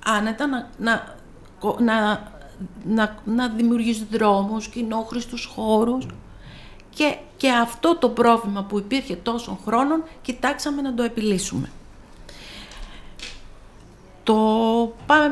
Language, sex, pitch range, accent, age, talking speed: Greek, female, 195-250 Hz, native, 50-69, 100 wpm